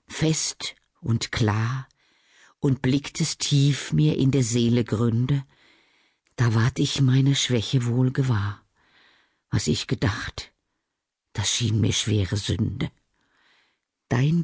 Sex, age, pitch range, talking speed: female, 50-69, 120-155 Hz, 110 wpm